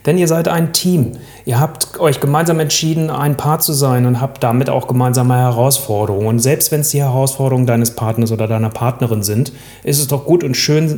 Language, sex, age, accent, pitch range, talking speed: German, male, 30-49, German, 125-160 Hz, 210 wpm